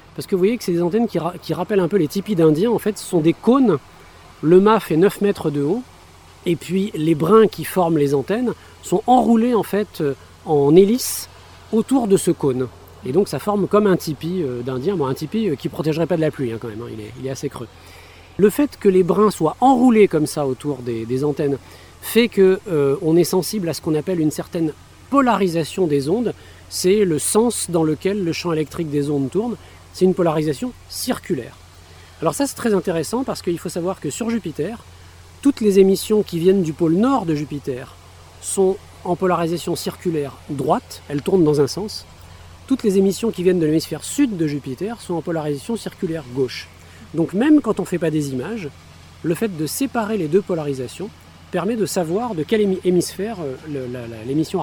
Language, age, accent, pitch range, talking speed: French, 40-59, French, 140-195 Hz, 205 wpm